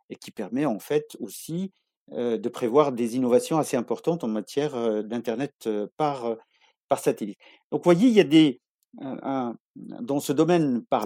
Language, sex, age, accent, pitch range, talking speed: French, male, 50-69, French, 120-180 Hz, 170 wpm